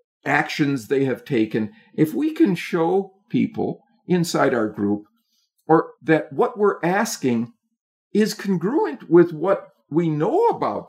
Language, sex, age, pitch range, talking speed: English, male, 50-69, 140-200 Hz, 130 wpm